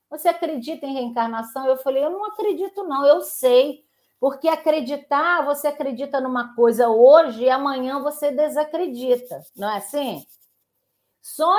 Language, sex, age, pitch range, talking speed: Portuguese, female, 40-59, 205-300 Hz, 140 wpm